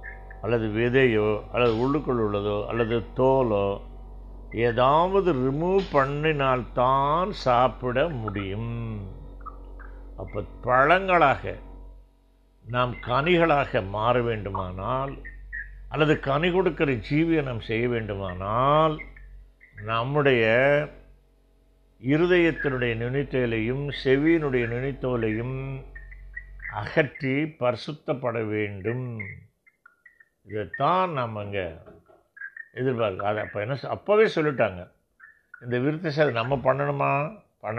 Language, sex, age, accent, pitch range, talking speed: Tamil, male, 60-79, native, 110-150 Hz, 75 wpm